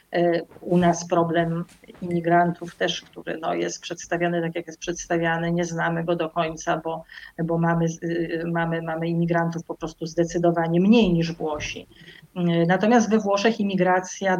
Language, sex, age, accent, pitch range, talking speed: Polish, female, 30-49, native, 170-200 Hz, 140 wpm